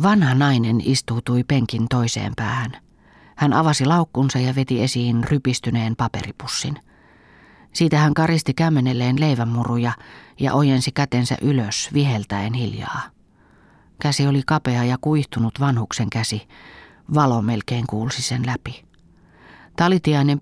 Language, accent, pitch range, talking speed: Finnish, native, 120-145 Hz, 115 wpm